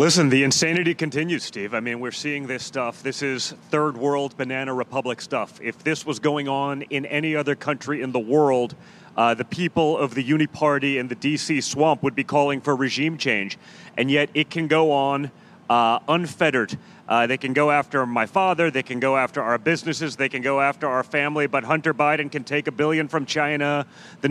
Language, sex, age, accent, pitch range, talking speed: English, male, 30-49, American, 140-160 Hz, 205 wpm